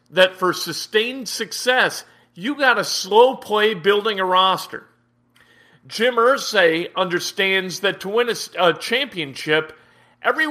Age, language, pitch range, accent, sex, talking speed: 40-59, English, 170-220 Hz, American, male, 125 wpm